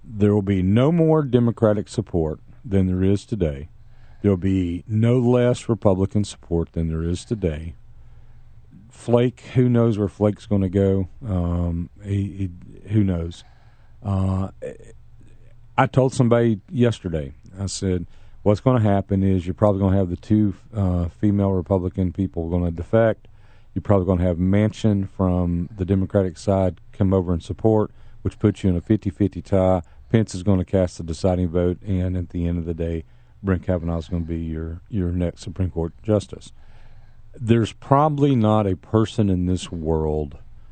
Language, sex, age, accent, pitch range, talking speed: English, male, 40-59, American, 85-110 Hz, 170 wpm